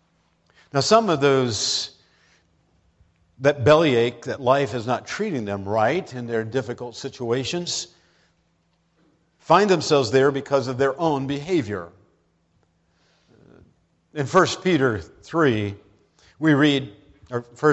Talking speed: 110 wpm